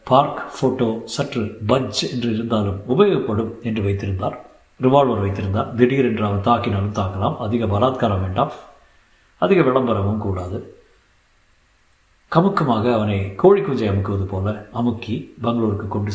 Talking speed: 115 wpm